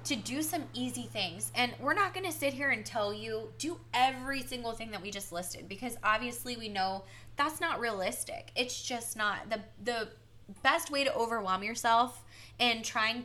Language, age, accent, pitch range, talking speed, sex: English, 10-29, American, 190-230 Hz, 190 wpm, female